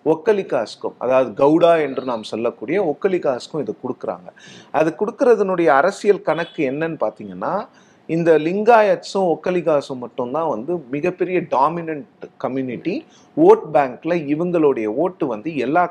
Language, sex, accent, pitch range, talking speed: Tamil, male, native, 145-195 Hz, 110 wpm